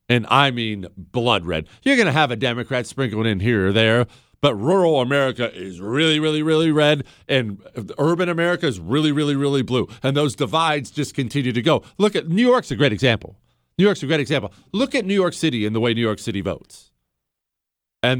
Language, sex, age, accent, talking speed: English, male, 40-59, American, 210 wpm